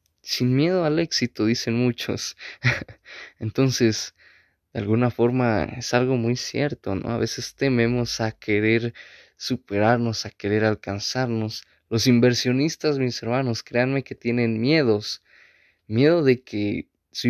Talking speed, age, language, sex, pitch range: 125 wpm, 20-39, Spanish, male, 110-125 Hz